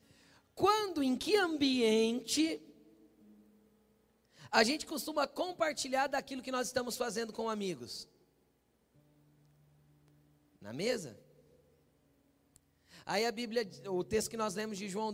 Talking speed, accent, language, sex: 105 wpm, Brazilian, Portuguese, male